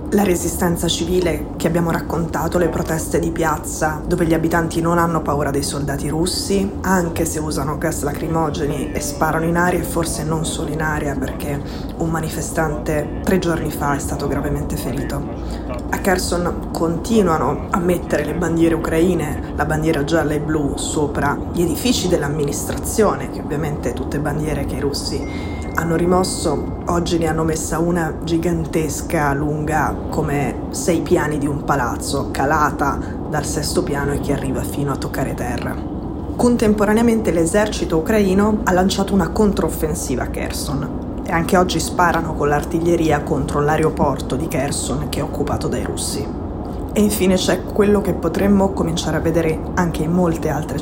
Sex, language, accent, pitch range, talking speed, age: female, Italian, native, 155-180 Hz, 155 wpm, 20-39